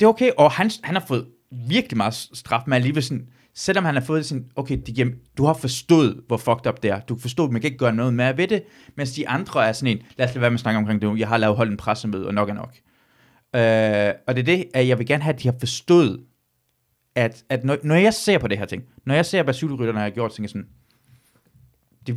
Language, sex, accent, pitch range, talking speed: Danish, male, native, 120-150 Hz, 275 wpm